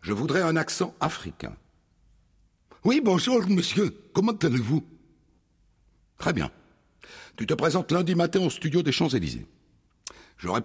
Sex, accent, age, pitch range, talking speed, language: male, French, 60-79, 90-150 Hz, 125 wpm, French